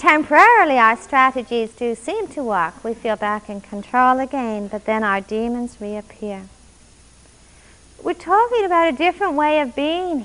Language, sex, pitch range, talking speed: English, female, 210-275 Hz, 150 wpm